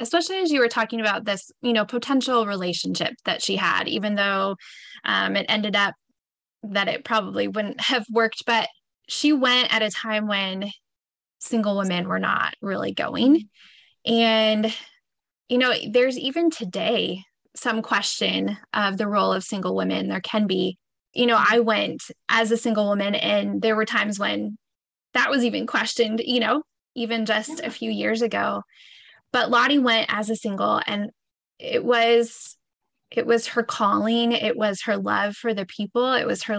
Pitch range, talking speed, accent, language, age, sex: 205-245 Hz, 170 wpm, American, English, 10-29, female